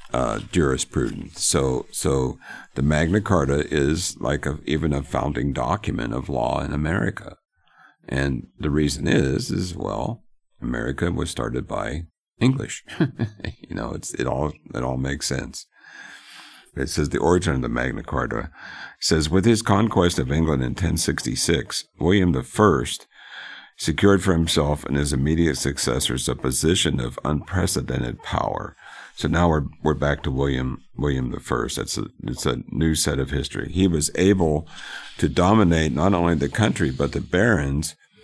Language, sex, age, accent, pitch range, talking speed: English, male, 60-79, American, 70-90 Hz, 155 wpm